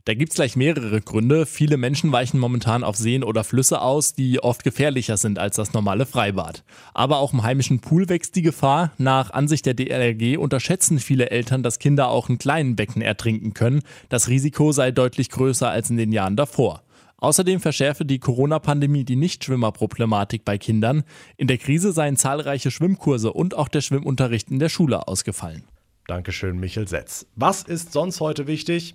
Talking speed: 180 wpm